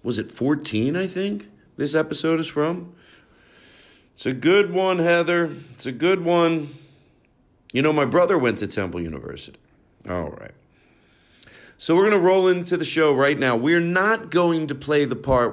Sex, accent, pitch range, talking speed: male, American, 105-145 Hz, 175 wpm